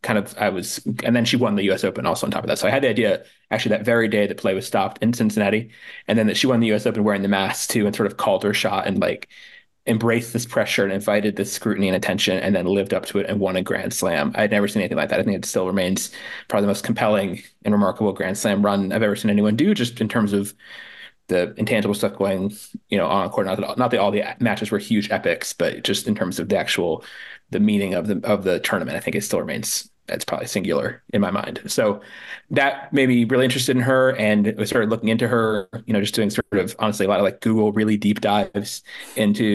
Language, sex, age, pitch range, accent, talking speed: English, male, 20-39, 105-120 Hz, American, 265 wpm